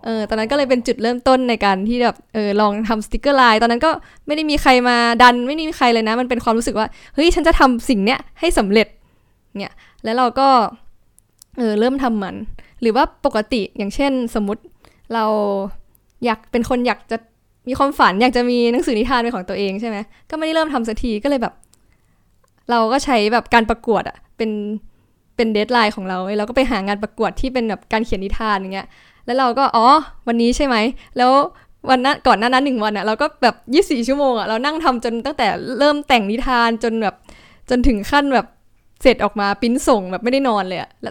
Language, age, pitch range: Thai, 10-29, 215-265 Hz